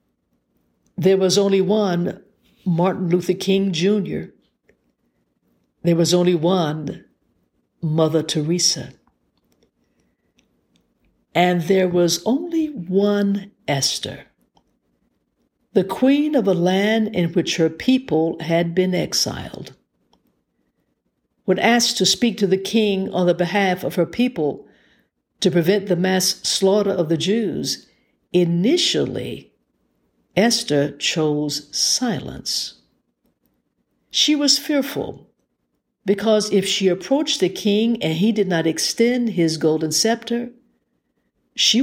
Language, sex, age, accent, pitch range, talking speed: English, female, 60-79, American, 165-215 Hz, 110 wpm